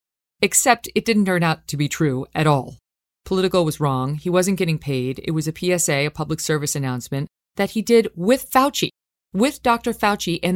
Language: English